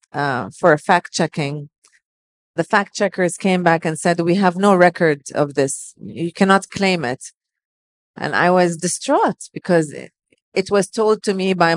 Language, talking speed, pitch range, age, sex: English, 165 wpm, 155-180 Hz, 40-59, female